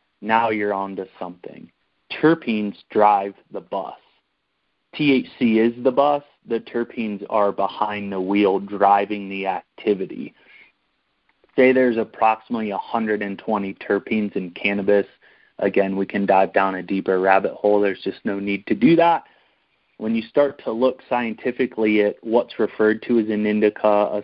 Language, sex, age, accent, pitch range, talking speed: English, male, 30-49, American, 100-115 Hz, 145 wpm